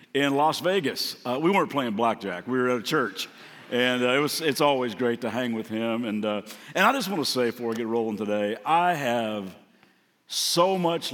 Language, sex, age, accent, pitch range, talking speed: English, male, 60-79, American, 115-145 Hz, 220 wpm